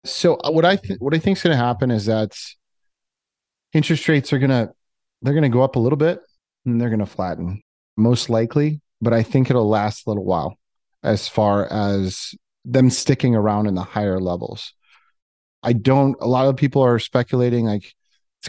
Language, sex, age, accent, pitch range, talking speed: English, male, 30-49, American, 105-130 Hz, 190 wpm